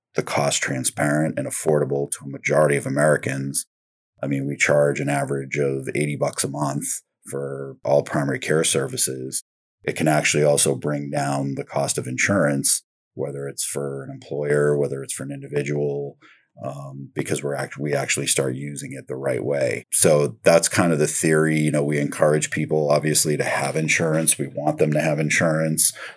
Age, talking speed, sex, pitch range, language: 30-49, 180 wpm, male, 70-75 Hz, English